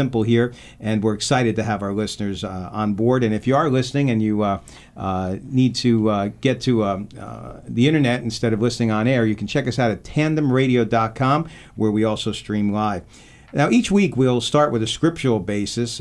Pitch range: 105-130 Hz